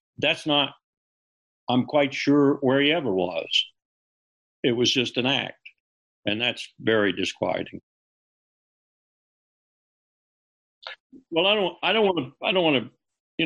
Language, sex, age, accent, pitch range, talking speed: English, male, 60-79, American, 110-145 Hz, 125 wpm